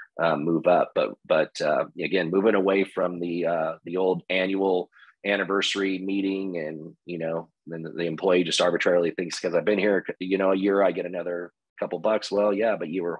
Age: 30-49